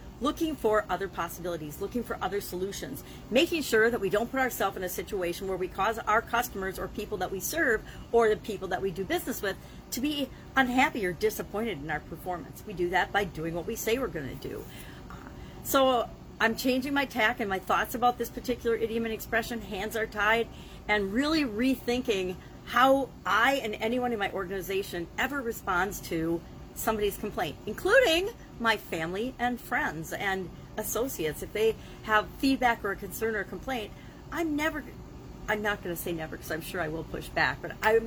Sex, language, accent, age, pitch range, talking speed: female, English, American, 40-59, 190-245 Hz, 190 wpm